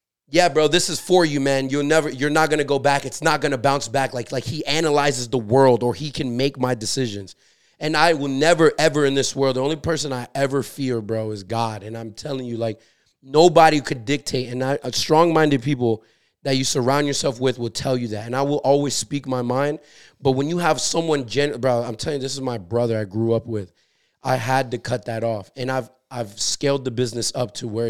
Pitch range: 120-150 Hz